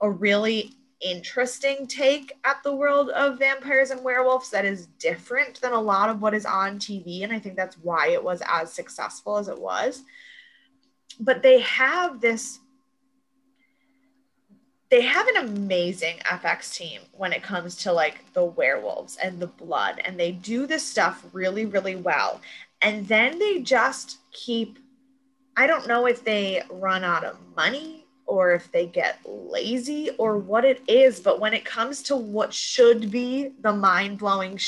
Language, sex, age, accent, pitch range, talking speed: English, female, 20-39, American, 195-270 Hz, 165 wpm